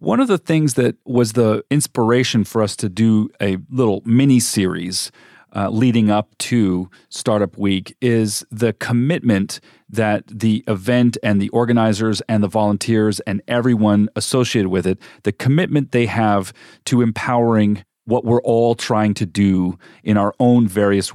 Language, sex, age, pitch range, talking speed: English, male, 40-59, 105-130 Hz, 150 wpm